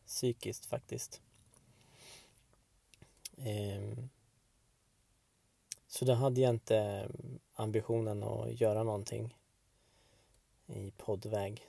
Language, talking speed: Swedish, 65 wpm